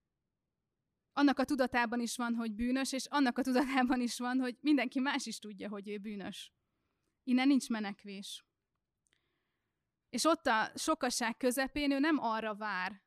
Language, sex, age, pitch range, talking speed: Hungarian, female, 20-39, 215-250 Hz, 150 wpm